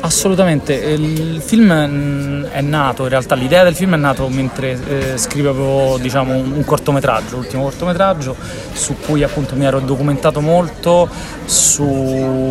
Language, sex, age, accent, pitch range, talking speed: Italian, male, 30-49, native, 125-150 Hz, 135 wpm